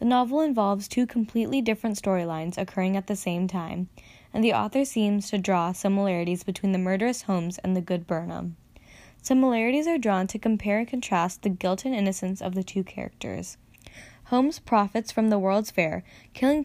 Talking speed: 175 wpm